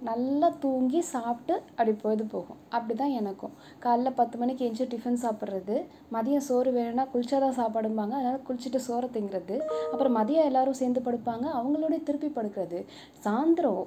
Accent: native